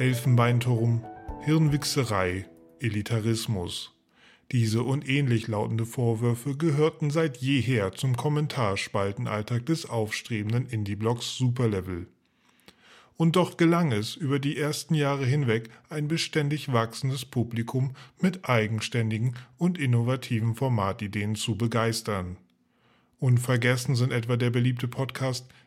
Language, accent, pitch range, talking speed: German, German, 115-140 Hz, 100 wpm